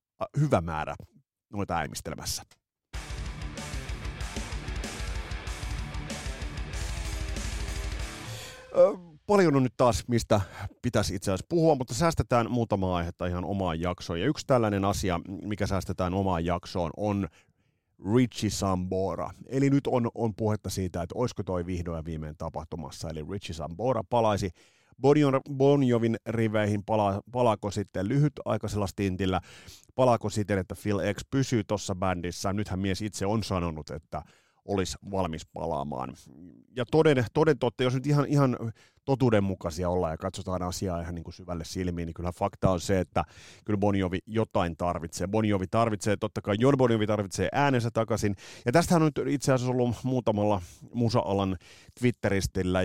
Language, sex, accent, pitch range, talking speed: Finnish, male, native, 90-115 Hz, 130 wpm